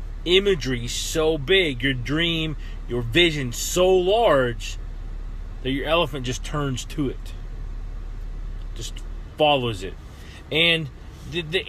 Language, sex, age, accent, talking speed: English, male, 30-49, American, 120 wpm